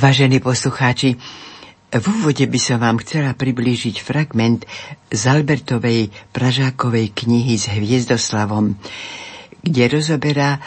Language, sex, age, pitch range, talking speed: Slovak, female, 60-79, 110-155 Hz, 100 wpm